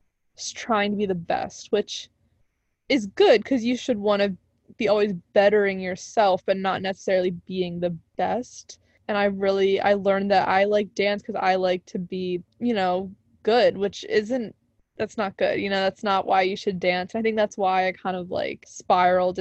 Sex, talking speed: female, 190 wpm